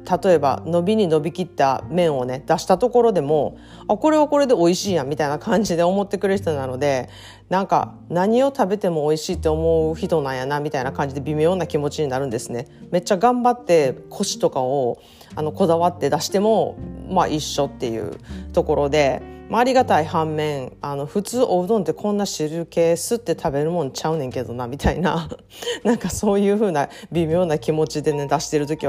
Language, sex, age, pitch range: Japanese, female, 40-59, 145-210 Hz